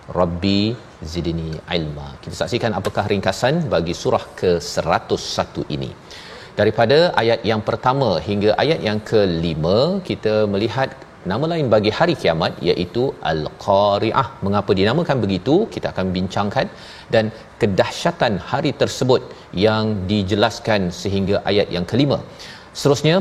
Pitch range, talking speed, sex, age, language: 95-120 Hz, 115 wpm, male, 40-59, Malayalam